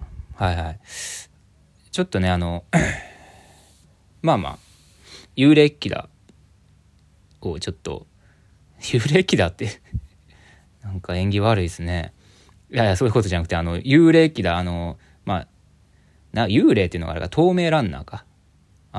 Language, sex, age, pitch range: Japanese, male, 20-39, 90-125 Hz